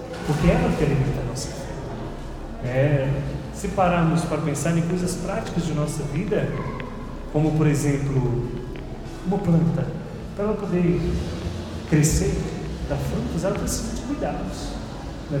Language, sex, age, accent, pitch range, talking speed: Portuguese, male, 30-49, Brazilian, 130-170 Hz, 135 wpm